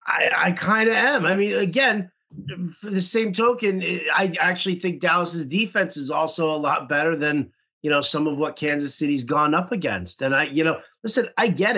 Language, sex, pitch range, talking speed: English, male, 145-190 Hz, 200 wpm